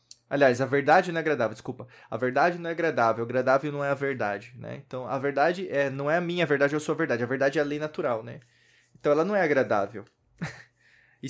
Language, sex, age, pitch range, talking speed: Portuguese, male, 20-39, 130-185 Hz, 235 wpm